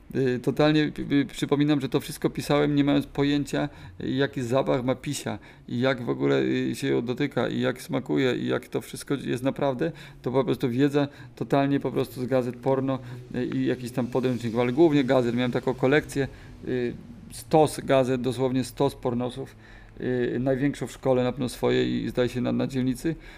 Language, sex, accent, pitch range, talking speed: Polish, male, native, 125-145 Hz, 165 wpm